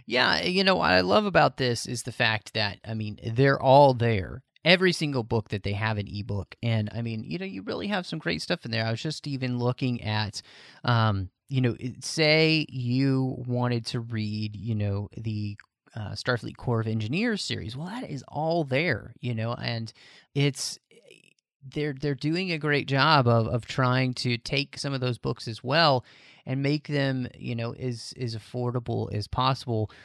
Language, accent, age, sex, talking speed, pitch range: English, American, 30-49, male, 195 wpm, 110-140 Hz